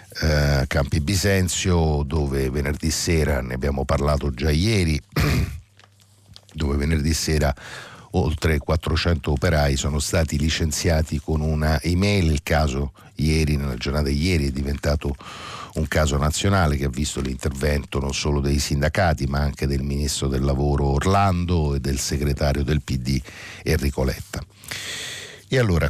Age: 60-79